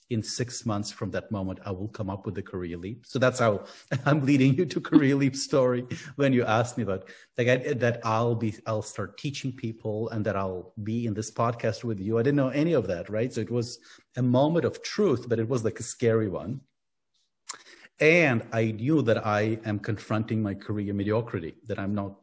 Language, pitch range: English, 105-125 Hz